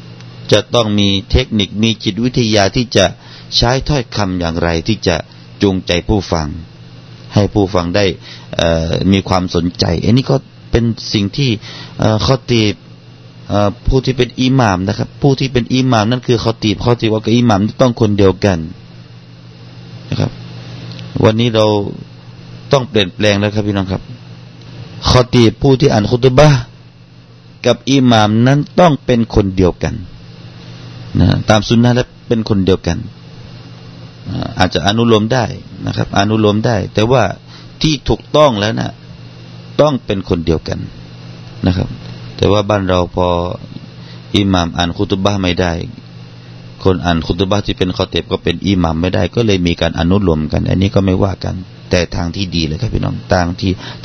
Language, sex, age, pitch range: Thai, male, 30-49, 80-110 Hz